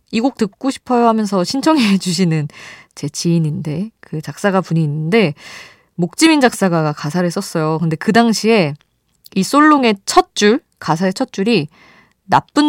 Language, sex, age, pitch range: Korean, female, 20-39, 160-245 Hz